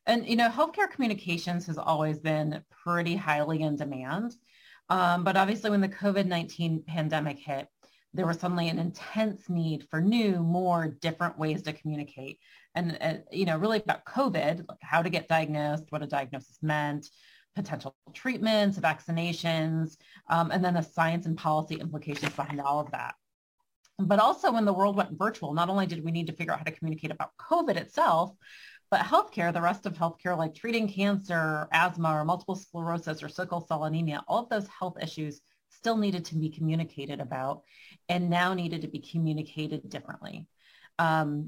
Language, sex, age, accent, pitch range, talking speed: English, female, 30-49, American, 150-180 Hz, 175 wpm